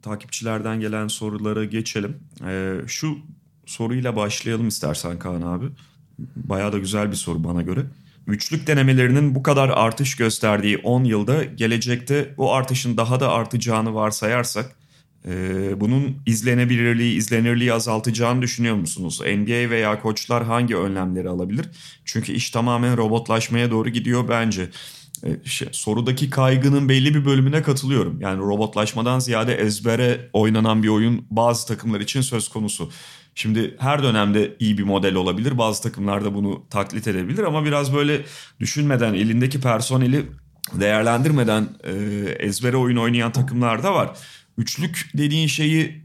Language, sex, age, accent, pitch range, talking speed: Turkish, male, 40-59, native, 110-135 Hz, 135 wpm